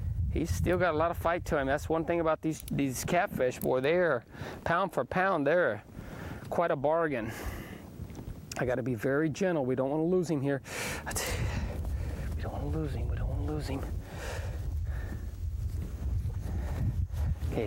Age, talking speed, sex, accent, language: 30-49, 175 wpm, male, American, English